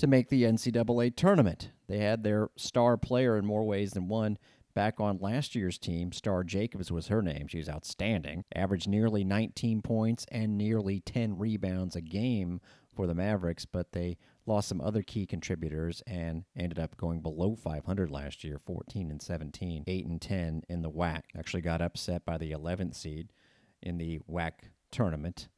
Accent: American